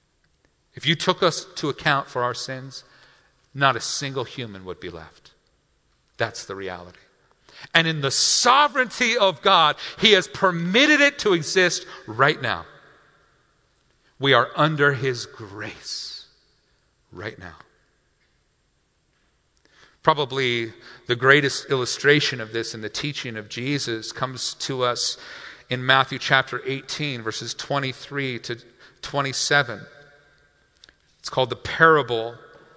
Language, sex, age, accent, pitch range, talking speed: English, male, 50-69, American, 135-205 Hz, 120 wpm